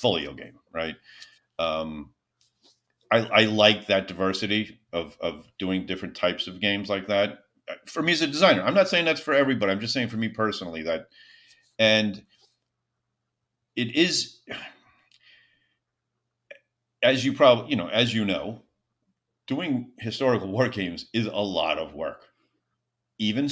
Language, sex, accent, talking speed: English, male, American, 145 wpm